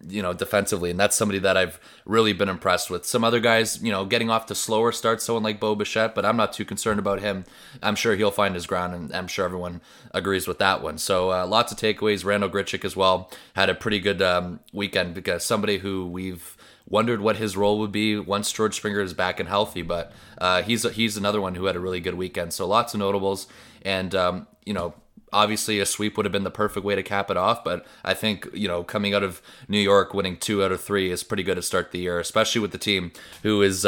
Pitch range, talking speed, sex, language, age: 95-110 Hz, 250 wpm, male, English, 20-39